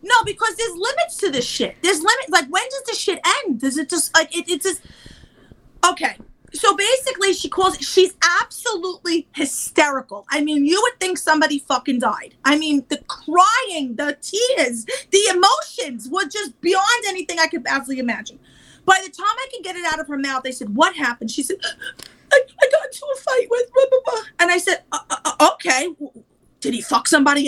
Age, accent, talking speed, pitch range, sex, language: 30-49, American, 200 wpm, 295-420 Hz, female, English